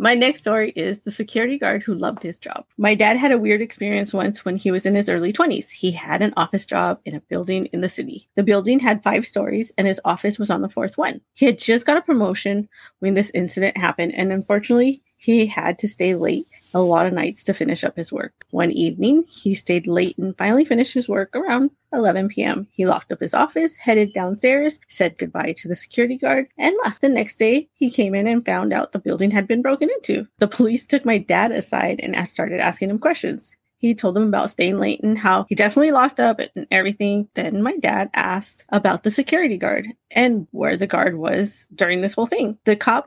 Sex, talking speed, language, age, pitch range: female, 225 wpm, English, 30-49, 195-245 Hz